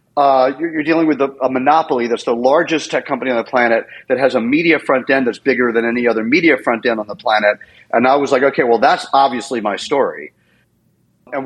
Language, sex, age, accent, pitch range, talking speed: English, male, 40-59, American, 115-135 Hz, 220 wpm